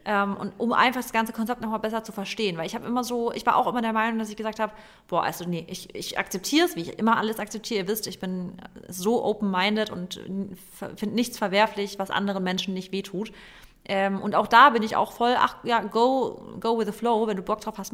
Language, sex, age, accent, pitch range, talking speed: German, female, 30-49, German, 200-235 Hz, 240 wpm